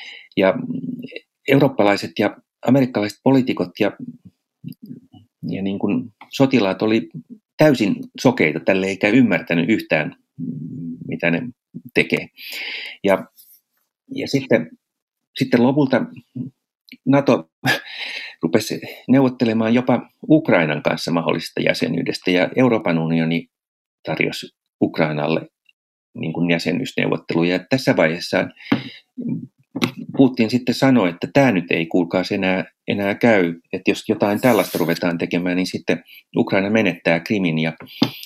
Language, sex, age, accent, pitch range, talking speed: Finnish, male, 40-59, native, 90-125 Hz, 100 wpm